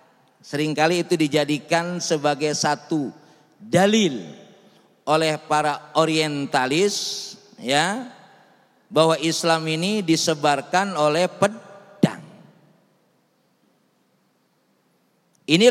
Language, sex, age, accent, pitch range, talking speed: Indonesian, male, 40-59, native, 165-220 Hz, 65 wpm